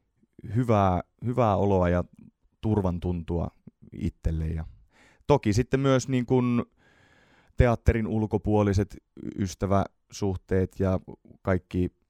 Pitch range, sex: 85-105 Hz, male